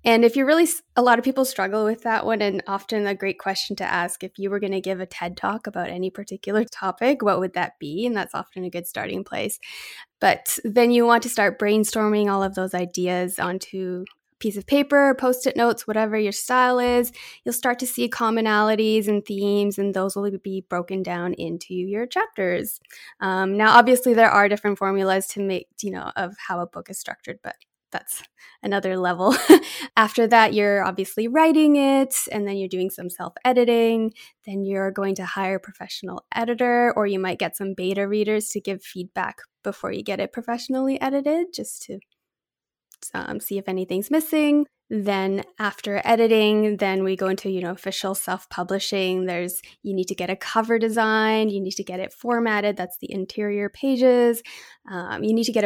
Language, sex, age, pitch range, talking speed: English, female, 10-29, 190-235 Hz, 195 wpm